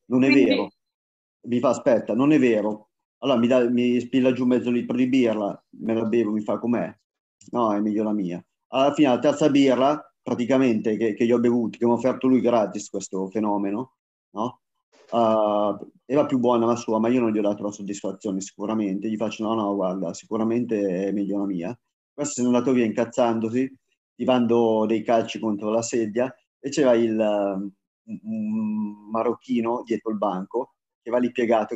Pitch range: 105-130 Hz